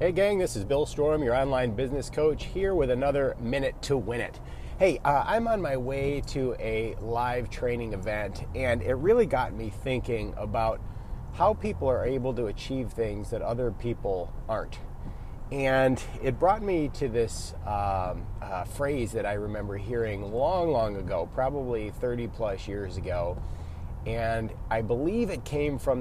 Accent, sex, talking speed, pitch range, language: American, male, 170 wpm, 105-140 Hz, English